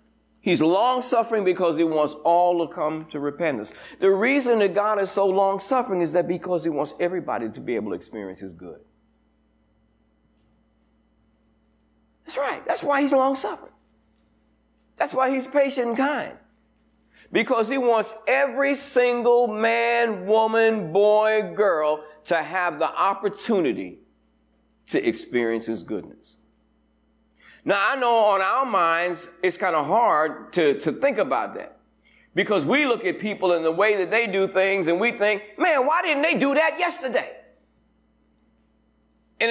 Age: 50-69